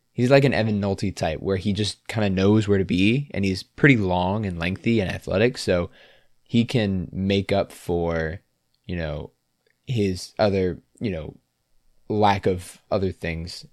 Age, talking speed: 20-39, 170 wpm